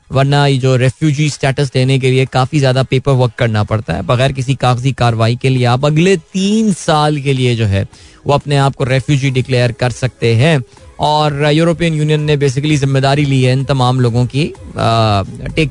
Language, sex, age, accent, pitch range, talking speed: Hindi, male, 20-39, native, 120-150 Hz, 190 wpm